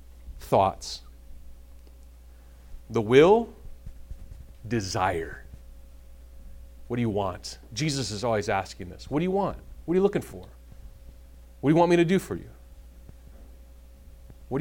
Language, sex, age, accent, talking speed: English, male, 40-59, American, 130 wpm